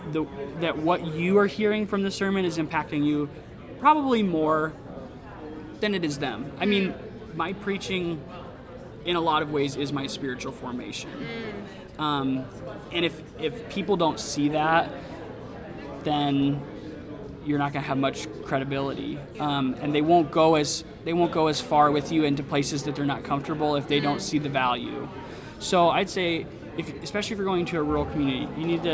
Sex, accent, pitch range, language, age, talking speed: male, American, 140-165 Hz, English, 20-39, 180 wpm